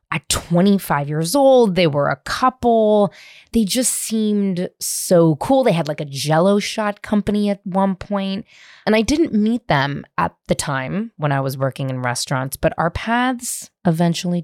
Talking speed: 170 wpm